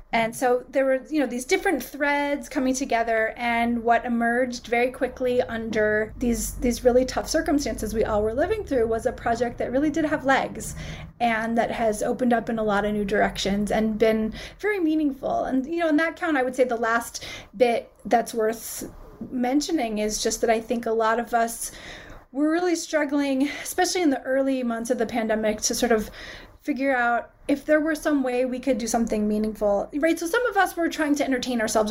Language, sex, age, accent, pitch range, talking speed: English, female, 30-49, American, 225-285 Hz, 205 wpm